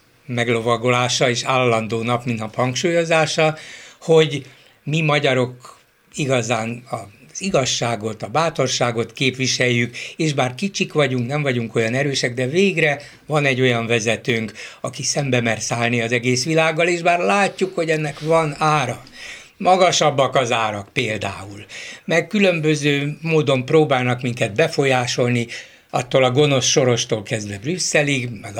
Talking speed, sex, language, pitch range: 130 wpm, male, Hungarian, 125-160 Hz